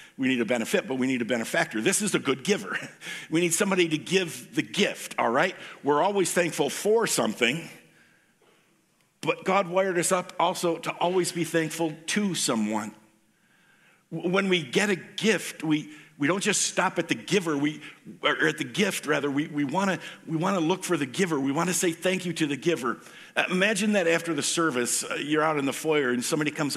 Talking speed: 200 wpm